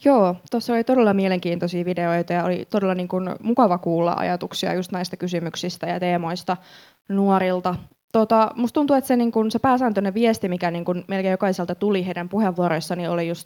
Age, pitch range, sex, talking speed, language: 20-39, 175-195 Hz, female, 145 wpm, Finnish